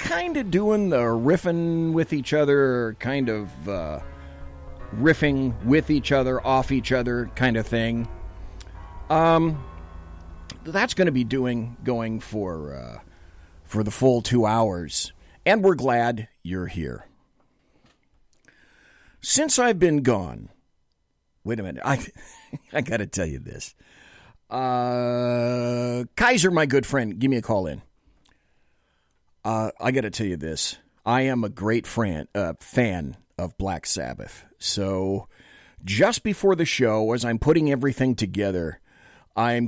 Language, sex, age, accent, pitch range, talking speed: English, male, 40-59, American, 95-145 Hz, 140 wpm